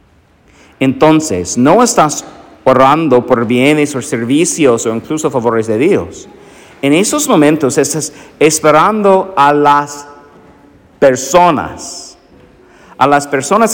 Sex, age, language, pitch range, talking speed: male, 50-69, English, 125-165 Hz, 105 wpm